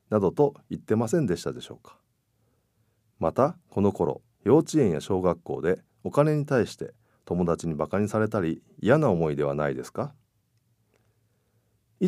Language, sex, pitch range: Japanese, male, 90-120 Hz